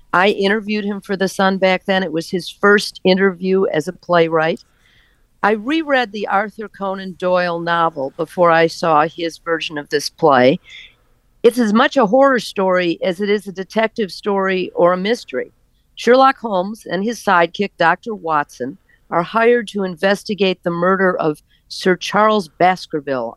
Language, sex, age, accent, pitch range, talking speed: English, female, 50-69, American, 165-205 Hz, 160 wpm